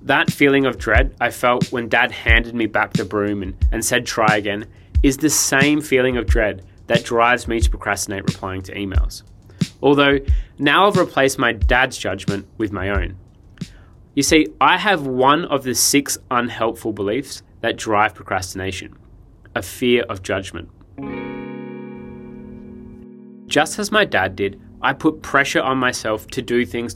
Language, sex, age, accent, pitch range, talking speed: English, male, 20-39, Australian, 100-140 Hz, 160 wpm